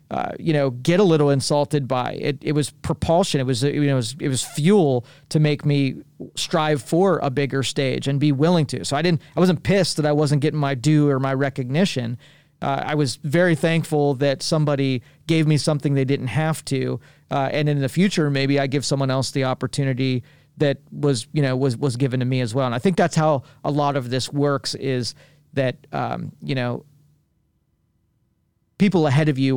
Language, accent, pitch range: English, American, 135-150 Hz